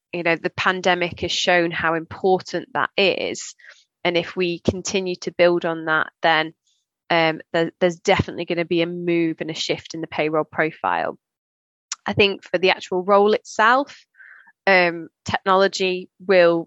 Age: 20-39